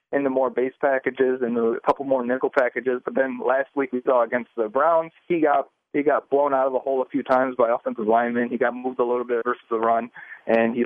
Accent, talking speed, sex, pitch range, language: American, 250 wpm, male, 120-150 Hz, English